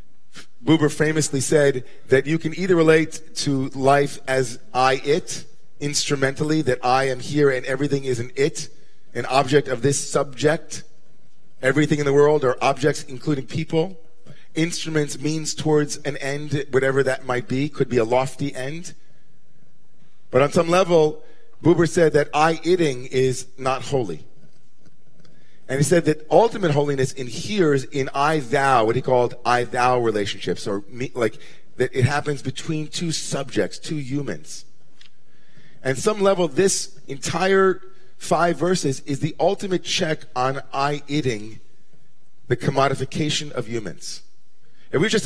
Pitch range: 130-160 Hz